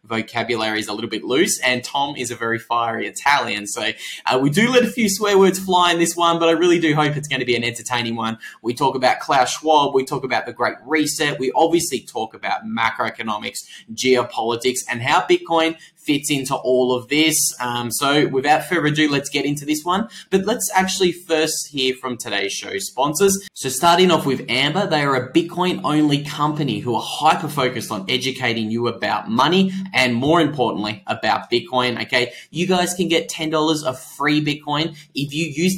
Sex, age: male, 10-29